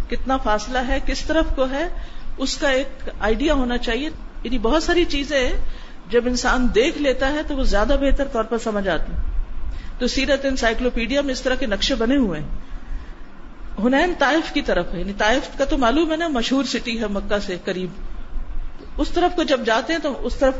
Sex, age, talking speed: female, 50-69, 200 wpm